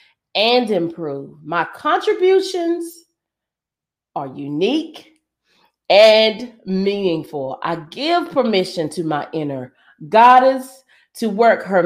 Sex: female